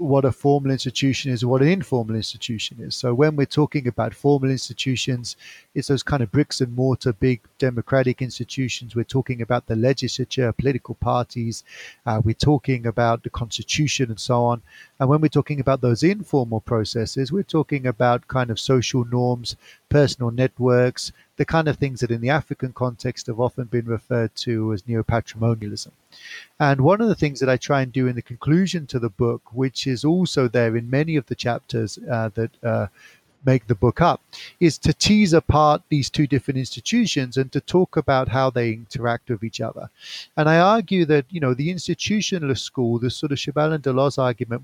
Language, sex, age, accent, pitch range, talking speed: English, male, 30-49, British, 120-145 Hz, 190 wpm